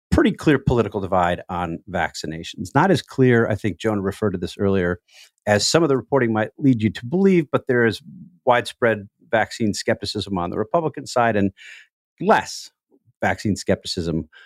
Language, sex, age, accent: English, male, 50-69, American